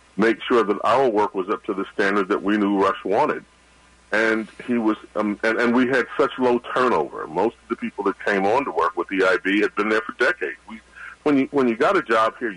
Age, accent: 40-59, American